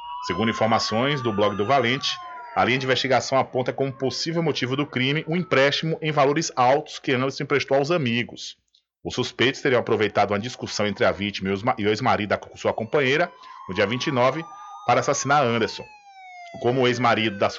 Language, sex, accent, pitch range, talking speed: Portuguese, male, Brazilian, 120-165 Hz, 170 wpm